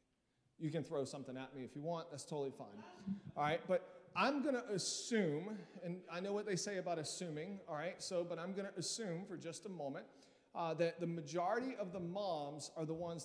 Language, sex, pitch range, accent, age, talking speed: English, male, 155-220 Hz, American, 40-59, 220 wpm